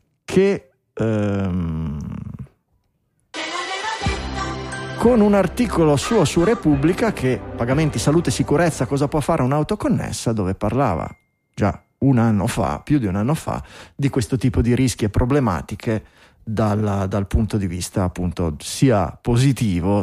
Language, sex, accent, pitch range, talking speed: Italian, male, native, 105-145 Hz, 130 wpm